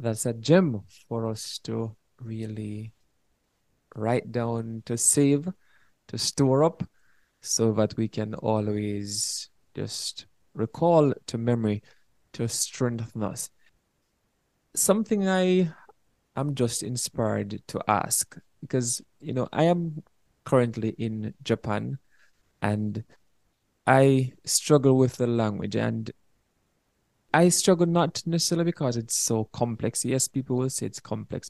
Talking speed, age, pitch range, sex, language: 120 wpm, 20-39, 110-145 Hz, male, English